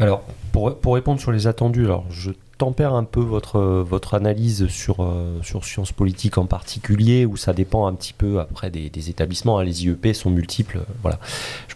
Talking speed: 195 wpm